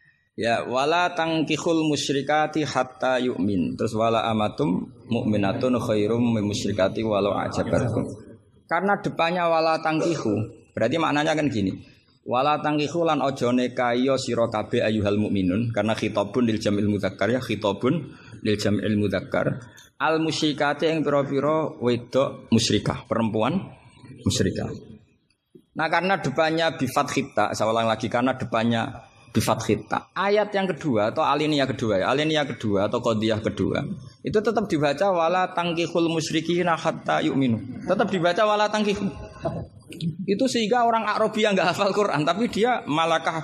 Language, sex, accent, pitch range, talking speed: Indonesian, male, native, 110-160 Hz, 120 wpm